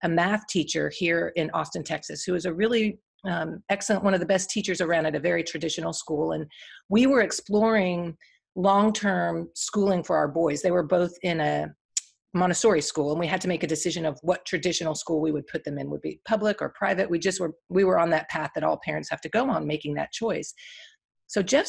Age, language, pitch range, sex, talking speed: 40-59, English, 165-210 Hz, female, 225 wpm